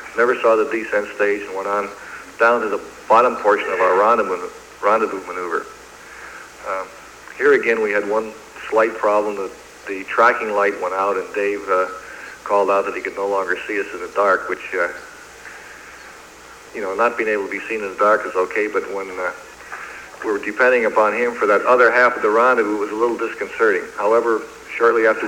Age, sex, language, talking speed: 50-69, male, Italian, 200 wpm